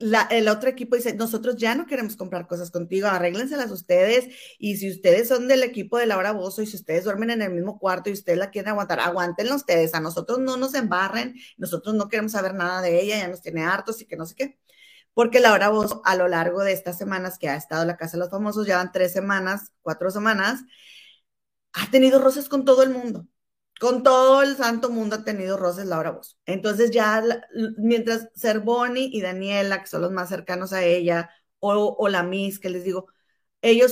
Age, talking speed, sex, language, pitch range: 30-49, 220 wpm, female, Spanish, 180-235 Hz